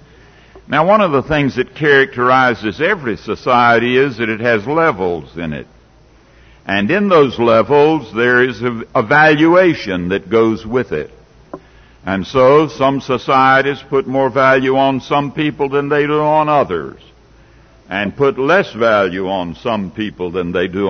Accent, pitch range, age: American, 115-150 Hz, 60-79